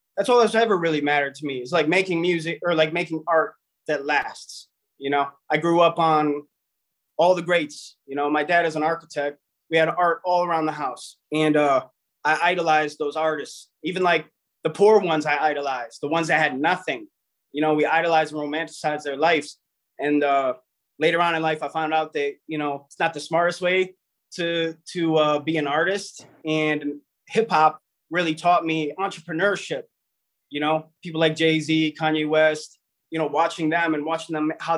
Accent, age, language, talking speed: American, 20-39, English, 195 wpm